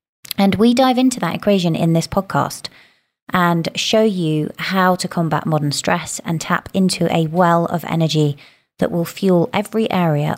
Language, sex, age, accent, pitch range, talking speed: English, female, 20-39, British, 155-190 Hz, 170 wpm